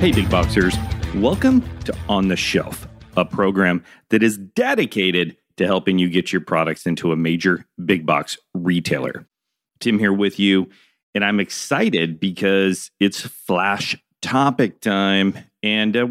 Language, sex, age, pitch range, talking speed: English, male, 40-59, 90-105 Hz, 145 wpm